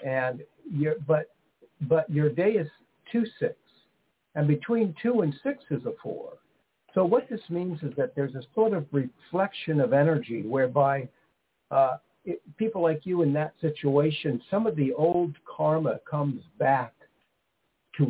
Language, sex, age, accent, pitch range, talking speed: English, male, 60-79, American, 140-175 Hz, 150 wpm